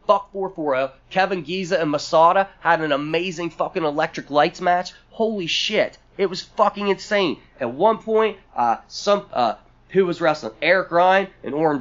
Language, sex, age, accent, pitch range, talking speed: English, male, 20-39, American, 160-220 Hz, 165 wpm